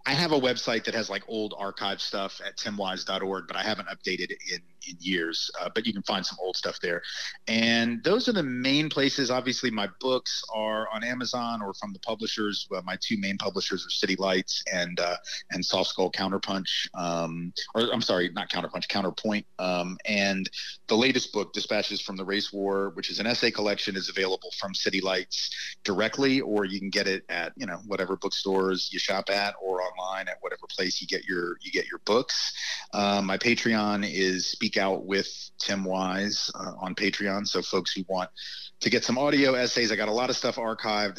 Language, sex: English, male